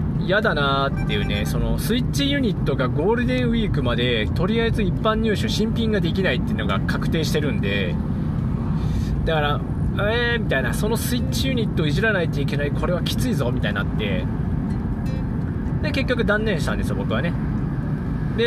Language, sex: Japanese, male